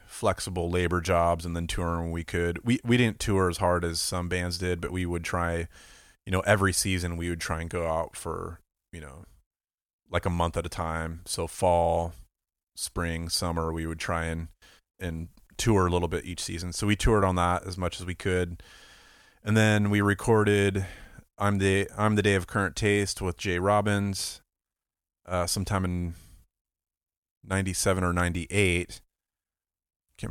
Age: 30-49